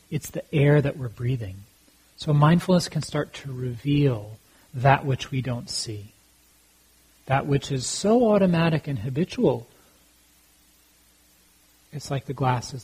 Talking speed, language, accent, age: 130 wpm, English, American, 40-59